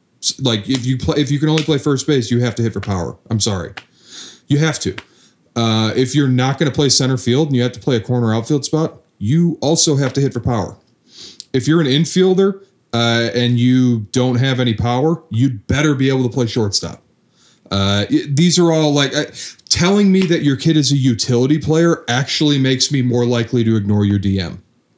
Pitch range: 110-135 Hz